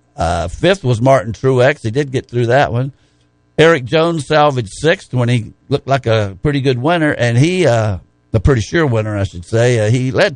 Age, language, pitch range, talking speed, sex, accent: 60-79, English, 105-145 Hz, 210 wpm, male, American